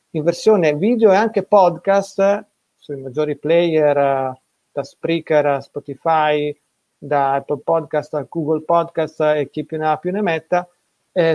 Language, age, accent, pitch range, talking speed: Italian, 30-49, native, 145-170 Hz, 150 wpm